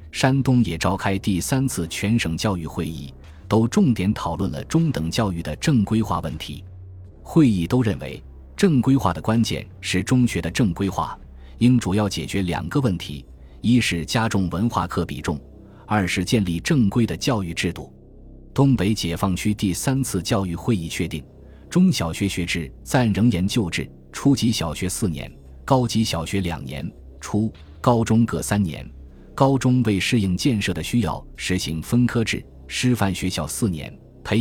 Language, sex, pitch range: Chinese, male, 80-115 Hz